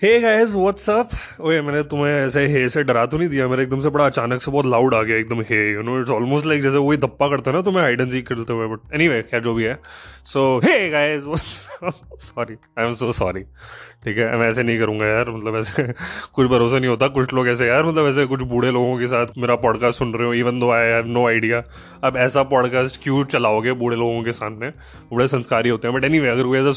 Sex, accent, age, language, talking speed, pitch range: male, native, 20-39, Hindi, 215 wpm, 125-175 Hz